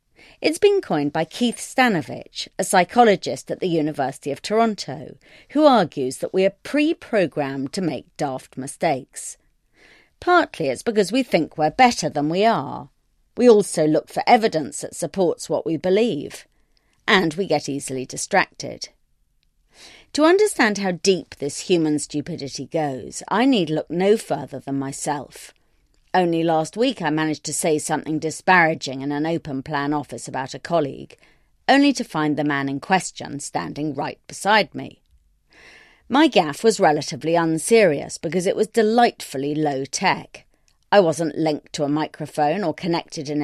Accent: British